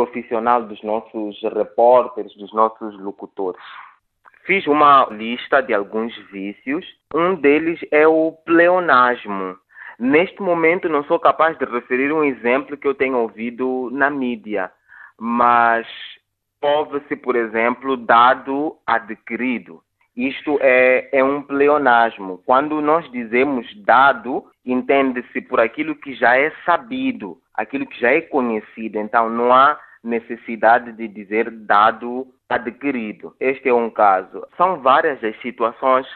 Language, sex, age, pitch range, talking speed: Portuguese, male, 20-39, 110-140 Hz, 130 wpm